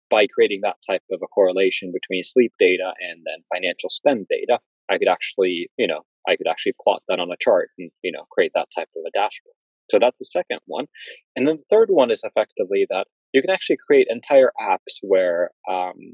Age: 20-39